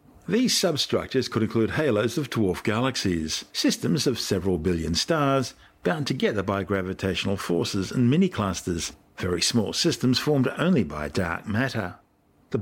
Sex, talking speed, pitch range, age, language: male, 140 wpm, 95-125 Hz, 50-69, English